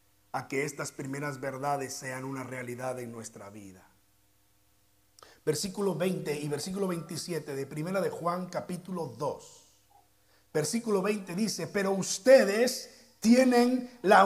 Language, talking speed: Spanish, 120 wpm